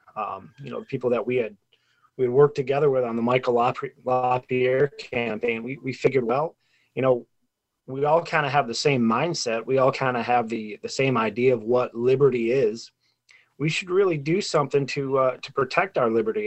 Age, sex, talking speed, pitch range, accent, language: 30-49, male, 200 wpm, 120-145 Hz, American, English